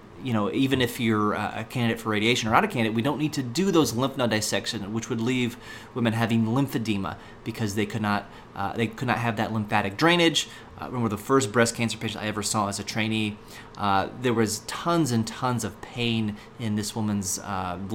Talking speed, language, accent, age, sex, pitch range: 220 wpm, English, American, 30-49, male, 105-130 Hz